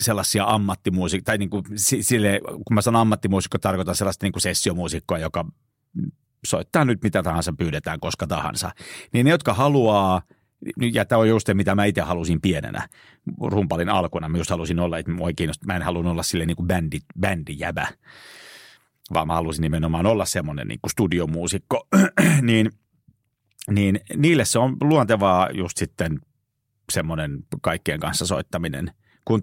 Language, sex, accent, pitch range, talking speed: Finnish, male, native, 90-115 Hz, 150 wpm